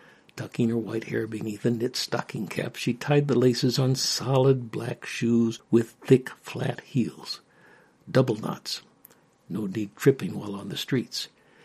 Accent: American